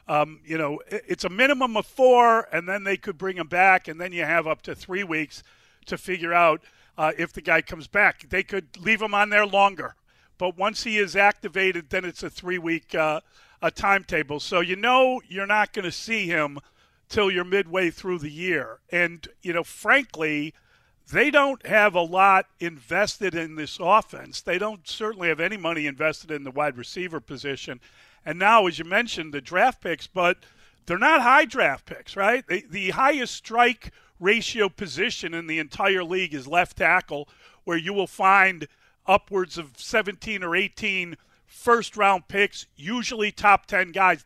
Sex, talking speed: male, 180 wpm